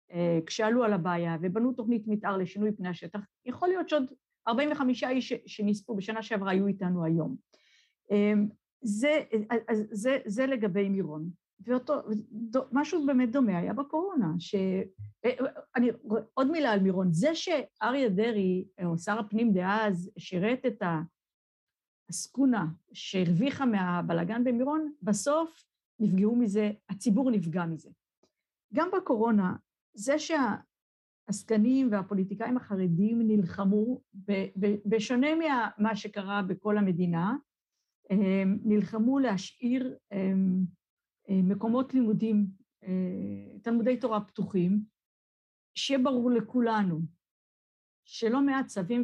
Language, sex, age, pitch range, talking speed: Hebrew, female, 50-69, 190-255 Hz, 100 wpm